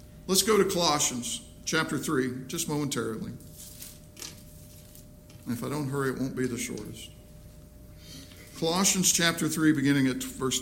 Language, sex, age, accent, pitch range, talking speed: English, male, 50-69, American, 120-195 Hz, 130 wpm